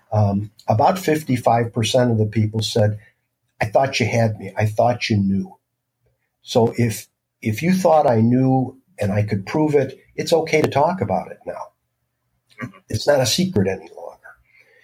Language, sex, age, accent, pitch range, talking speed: English, male, 50-69, American, 110-130 Hz, 165 wpm